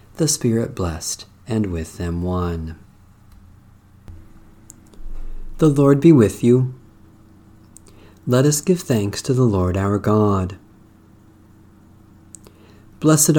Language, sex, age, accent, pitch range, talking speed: English, male, 40-59, American, 105-140 Hz, 100 wpm